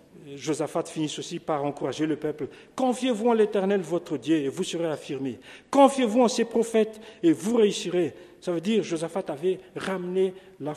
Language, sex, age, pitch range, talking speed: French, male, 50-69, 135-200 Hz, 175 wpm